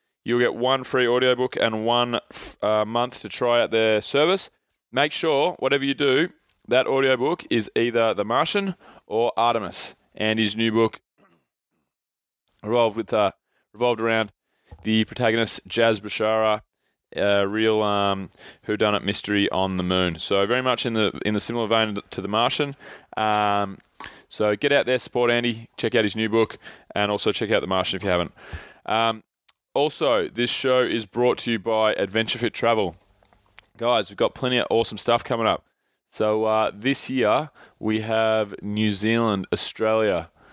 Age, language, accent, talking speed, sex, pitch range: 20-39, English, Australian, 165 wpm, male, 105-125 Hz